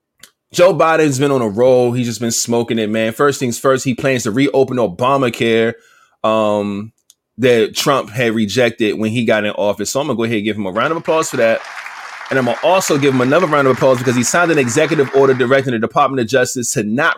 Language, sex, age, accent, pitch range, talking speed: English, male, 20-39, American, 115-145 Hz, 235 wpm